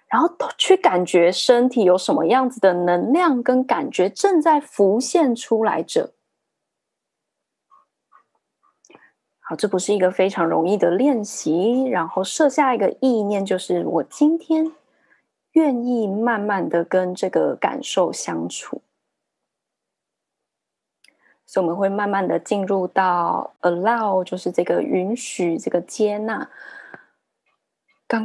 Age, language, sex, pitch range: 20-39, Chinese, female, 185-265 Hz